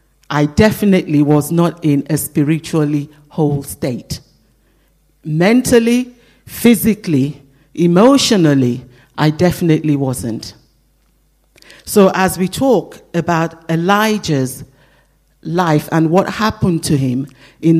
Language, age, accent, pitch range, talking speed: English, 50-69, Nigerian, 140-190 Hz, 95 wpm